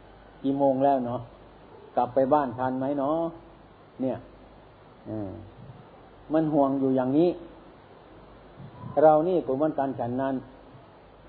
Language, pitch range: Thai, 115-140 Hz